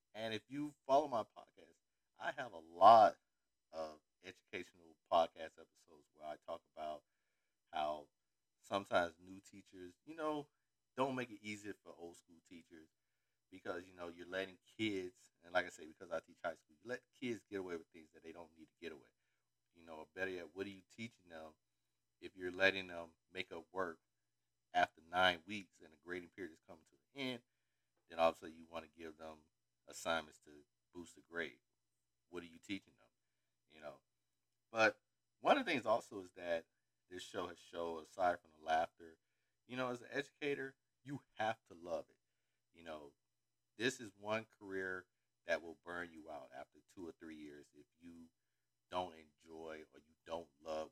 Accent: American